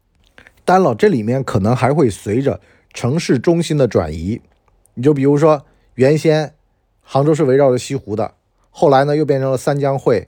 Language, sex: Chinese, male